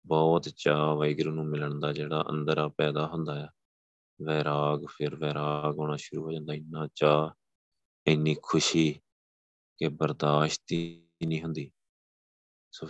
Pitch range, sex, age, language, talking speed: 75-80 Hz, male, 20-39, Punjabi, 130 wpm